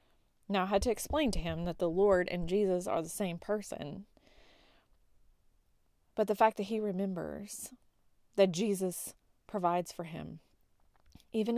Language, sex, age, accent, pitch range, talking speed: English, female, 20-39, American, 165-200 Hz, 145 wpm